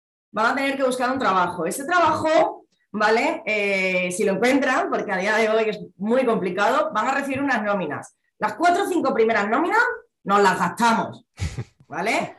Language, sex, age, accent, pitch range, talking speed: Spanish, female, 20-39, Spanish, 215-295 Hz, 180 wpm